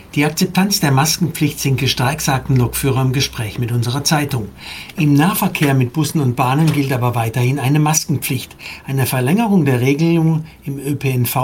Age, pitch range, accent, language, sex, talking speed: 60-79, 125-150 Hz, German, German, male, 155 wpm